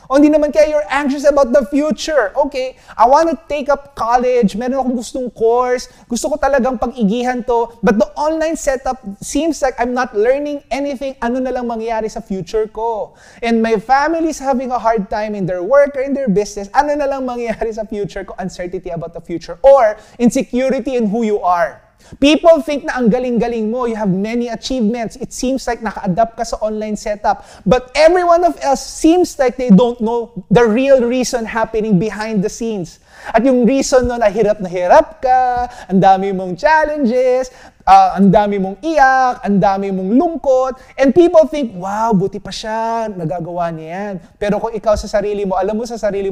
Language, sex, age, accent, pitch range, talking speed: English, male, 20-39, Filipino, 205-270 Hz, 190 wpm